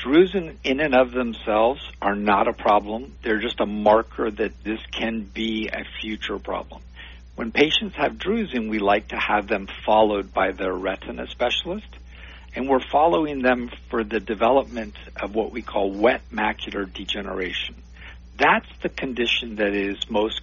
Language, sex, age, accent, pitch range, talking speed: English, male, 50-69, American, 90-120 Hz, 160 wpm